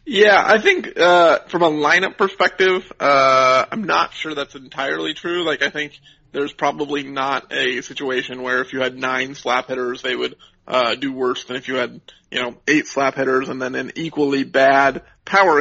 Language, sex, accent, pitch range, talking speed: English, male, American, 130-150 Hz, 190 wpm